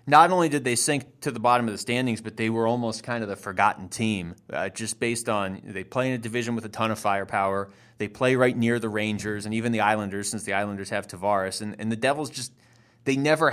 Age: 30-49